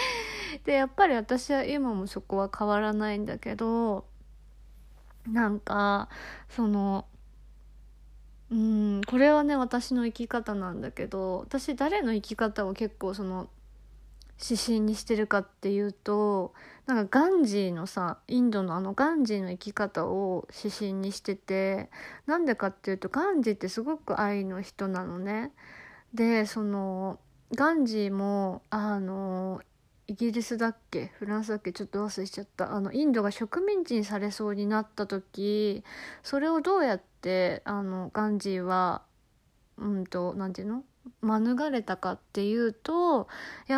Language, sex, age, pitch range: Japanese, female, 20-39, 195-240 Hz